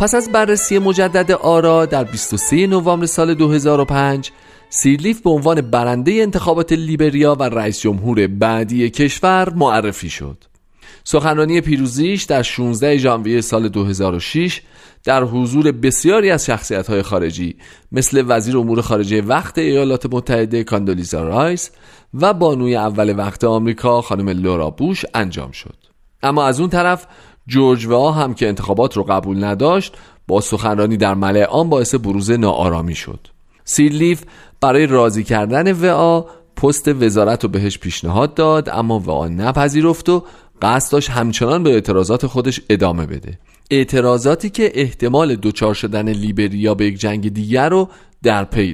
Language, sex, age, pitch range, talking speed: Persian, male, 40-59, 105-150 Hz, 135 wpm